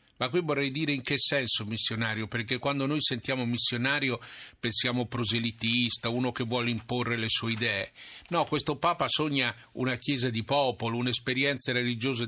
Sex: male